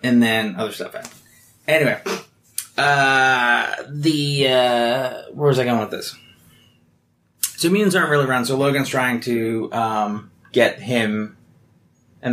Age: 30-49